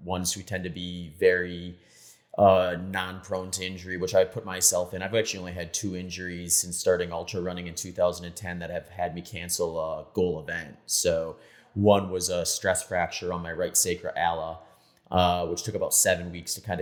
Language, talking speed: English, 195 wpm